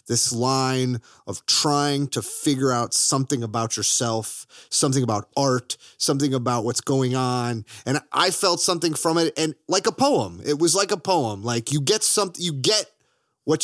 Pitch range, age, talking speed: 110-150 Hz, 30-49, 175 wpm